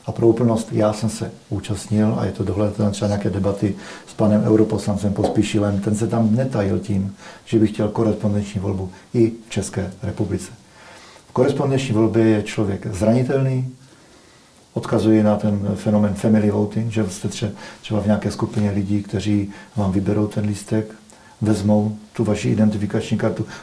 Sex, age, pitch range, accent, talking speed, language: male, 40-59, 105-115 Hz, native, 155 wpm, Czech